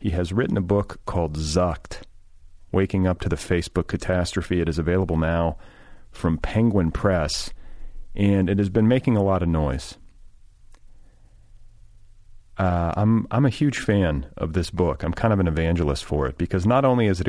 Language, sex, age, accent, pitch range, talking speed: English, male, 40-59, American, 85-105 Hz, 175 wpm